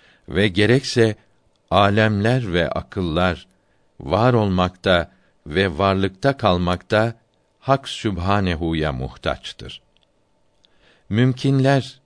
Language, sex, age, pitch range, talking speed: Turkish, male, 60-79, 90-120 Hz, 70 wpm